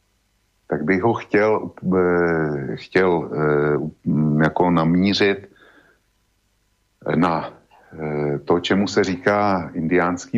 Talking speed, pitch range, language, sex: 75 wpm, 80-100 Hz, Slovak, male